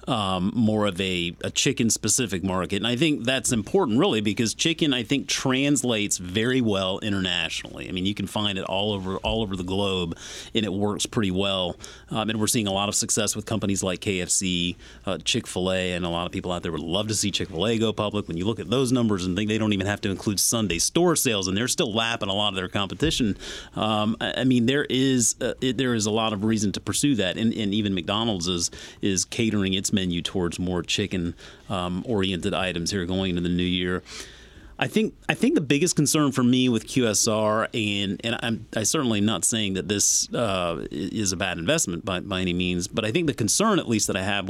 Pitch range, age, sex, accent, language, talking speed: 95-120 Hz, 30-49, male, American, English, 230 wpm